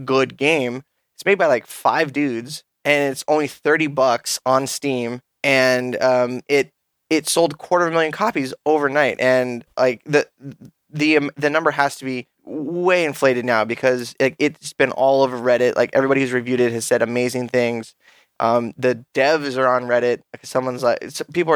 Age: 10-29